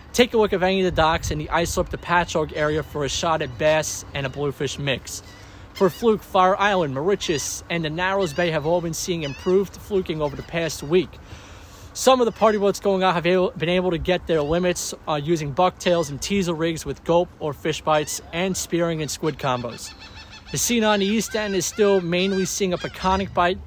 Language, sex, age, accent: English, male, 30-49, American